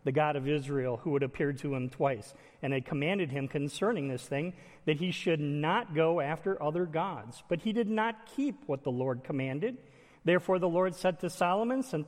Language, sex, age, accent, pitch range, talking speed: English, male, 40-59, American, 150-205 Hz, 205 wpm